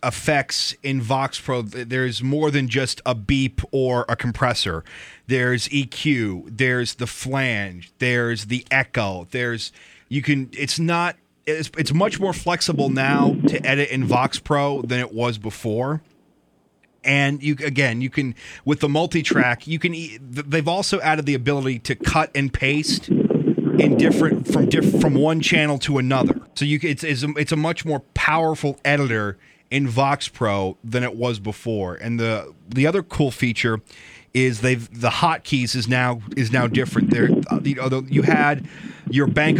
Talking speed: 165 wpm